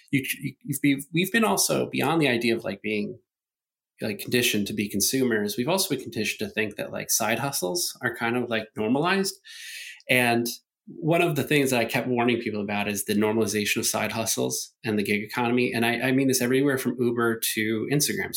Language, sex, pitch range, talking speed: English, male, 110-145 Hz, 195 wpm